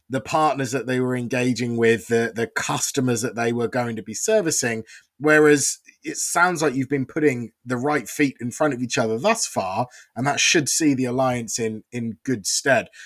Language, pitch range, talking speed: English, 120-155 Hz, 200 wpm